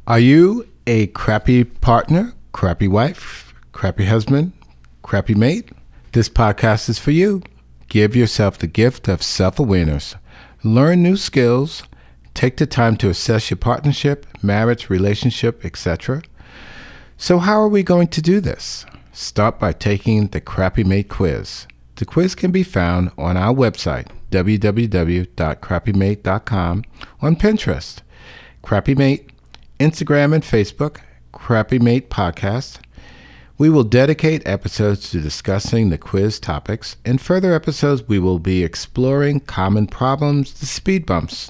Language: English